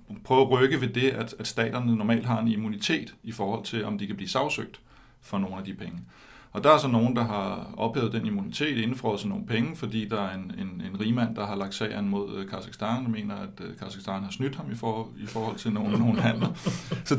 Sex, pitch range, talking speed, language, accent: male, 105-120 Hz, 235 wpm, Danish, native